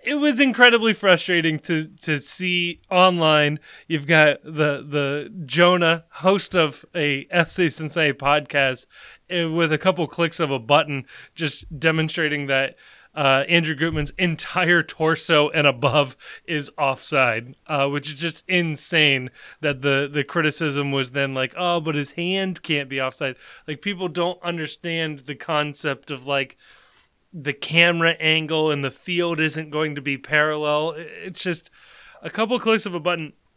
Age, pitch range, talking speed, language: 20-39, 145-175 Hz, 150 wpm, English